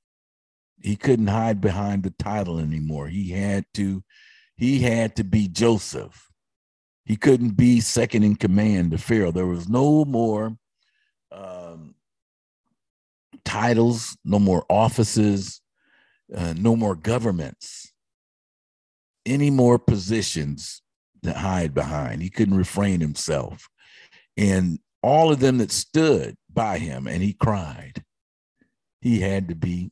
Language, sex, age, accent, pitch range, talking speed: English, male, 50-69, American, 95-120 Hz, 120 wpm